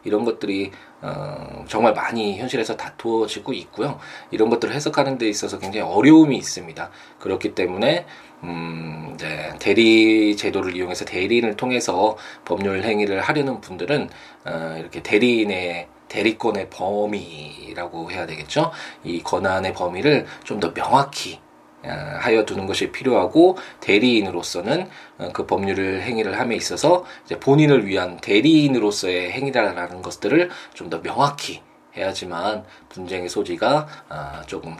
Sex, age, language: male, 20-39, Korean